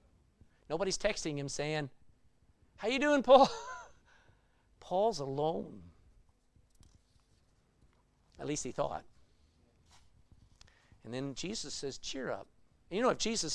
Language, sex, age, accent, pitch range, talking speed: English, male, 50-69, American, 120-200 Hz, 105 wpm